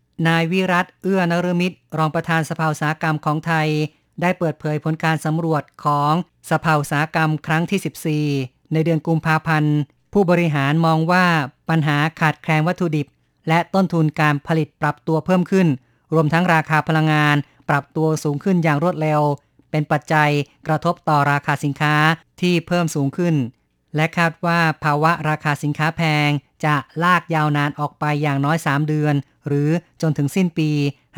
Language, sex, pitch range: Thai, female, 145-165 Hz